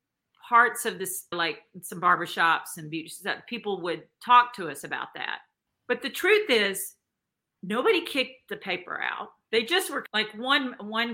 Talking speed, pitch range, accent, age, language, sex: 155 wpm, 180-230 Hz, American, 40-59, English, female